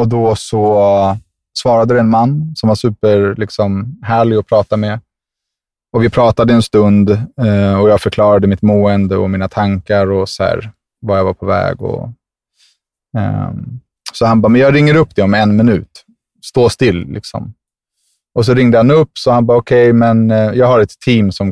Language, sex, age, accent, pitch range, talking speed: English, male, 20-39, Swedish, 95-115 Hz, 170 wpm